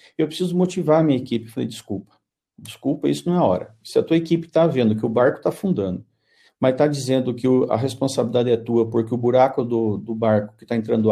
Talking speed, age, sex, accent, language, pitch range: 230 wpm, 50-69, male, Brazilian, Portuguese, 115-165 Hz